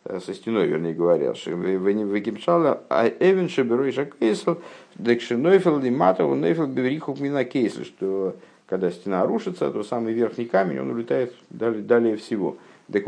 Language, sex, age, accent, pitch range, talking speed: Russian, male, 50-69, native, 110-130 Hz, 85 wpm